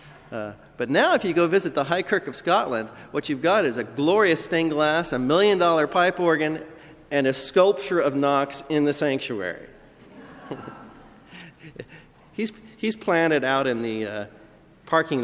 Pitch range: 115-165 Hz